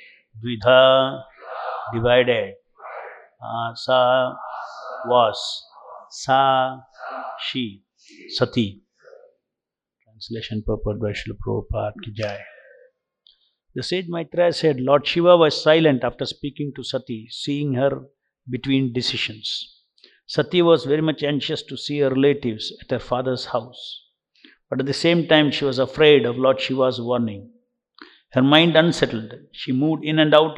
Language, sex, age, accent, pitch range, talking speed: English, male, 50-69, Indian, 125-155 Hz, 120 wpm